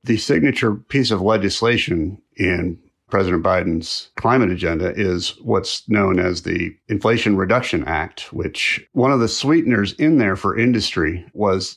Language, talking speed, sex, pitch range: English, 145 wpm, male, 90-110 Hz